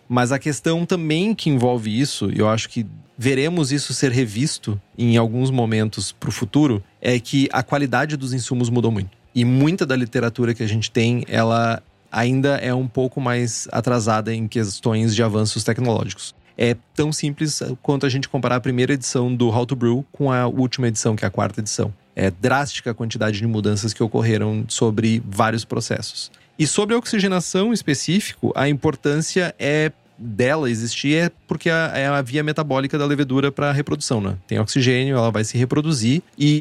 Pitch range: 115-150 Hz